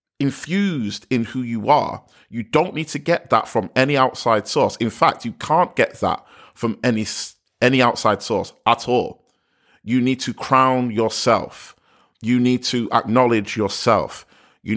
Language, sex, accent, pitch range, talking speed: English, male, British, 105-130 Hz, 160 wpm